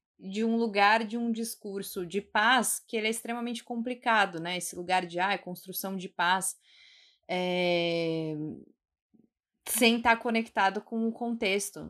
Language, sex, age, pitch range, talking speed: Portuguese, female, 20-39, 180-225 Hz, 135 wpm